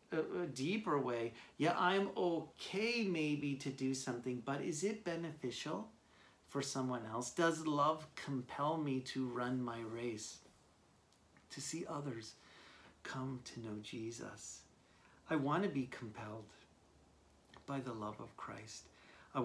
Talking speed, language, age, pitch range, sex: 135 wpm, English, 40-59, 120-160 Hz, male